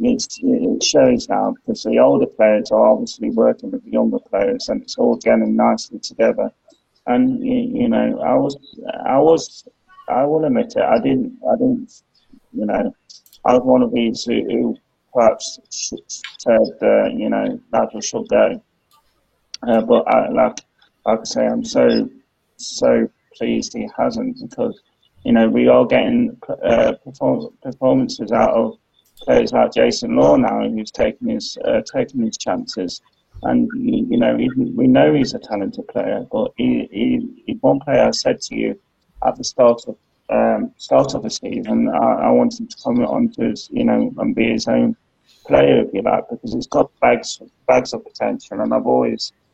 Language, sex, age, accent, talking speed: English, male, 20-39, British, 175 wpm